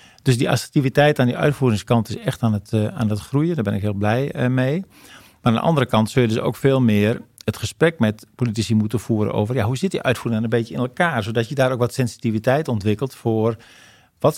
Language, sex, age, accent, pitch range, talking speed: Dutch, male, 50-69, Dutch, 115-130 Hz, 235 wpm